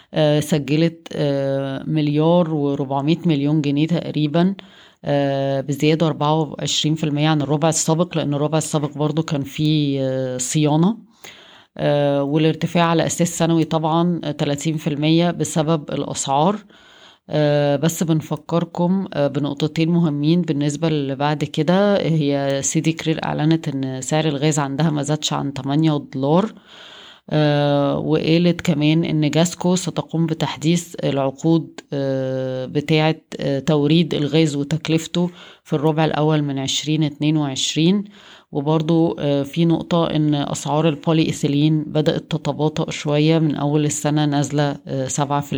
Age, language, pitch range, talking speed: 30-49, Arabic, 145-160 Hz, 110 wpm